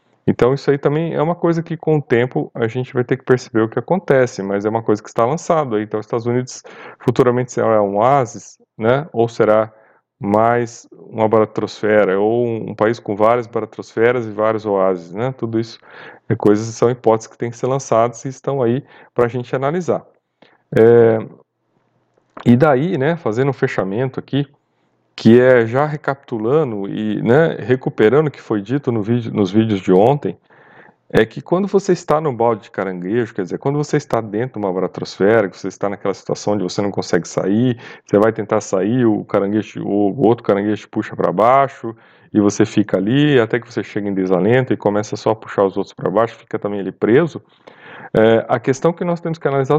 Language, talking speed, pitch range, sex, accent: Portuguese, 195 wpm, 105-135 Hz, male, Brazilian